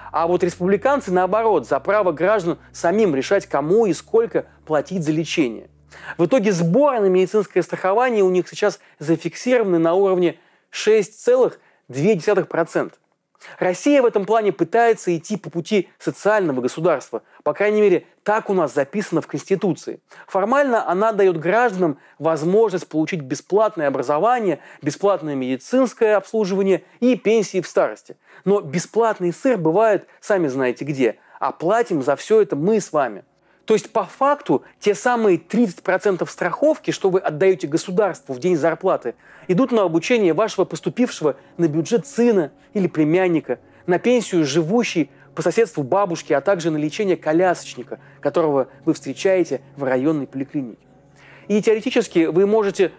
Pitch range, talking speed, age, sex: 160-215 Hz, 140 wpm, 30-49, male